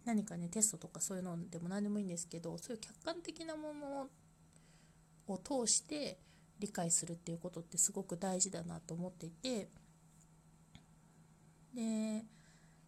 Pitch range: 165-215 Hz